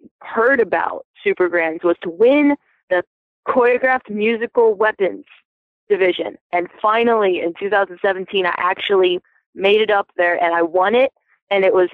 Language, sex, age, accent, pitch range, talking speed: English, female, 20-39, American, 175-215 Hz, 145 wpm